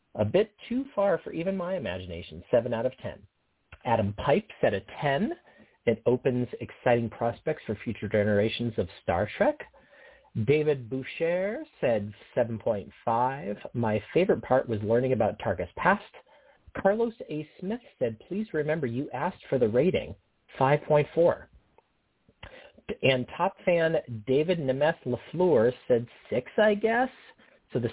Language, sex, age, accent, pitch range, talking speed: English, male, 40-59, American, 115-170 Hz, 135 wpm